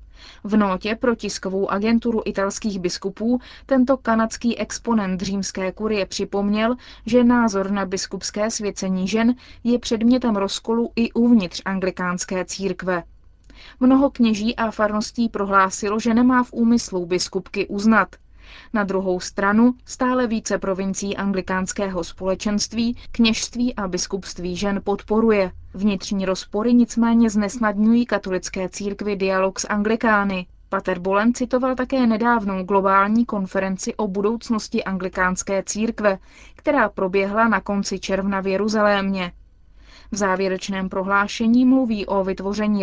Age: 20-39